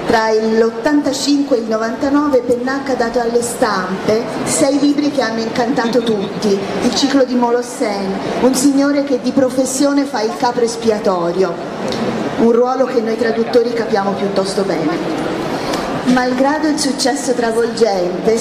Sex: female